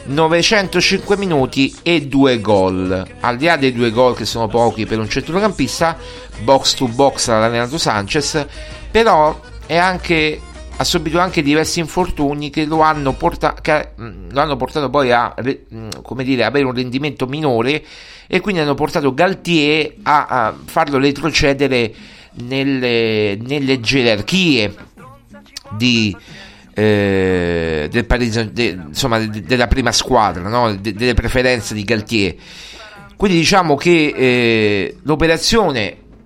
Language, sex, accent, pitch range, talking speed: Italian, male, native, 115-150 Hz, 125 wpm